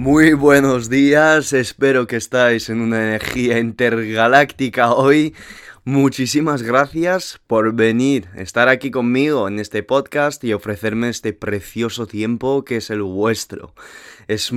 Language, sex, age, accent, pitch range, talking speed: Spanish, male, 20-39, Spanish, 110-135 Hz, 130 wpm